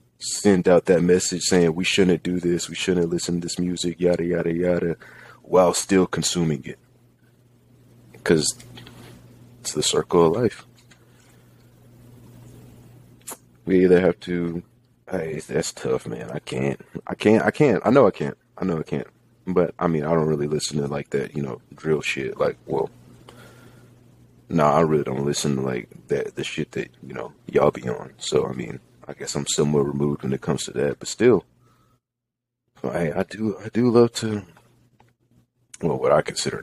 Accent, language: American, English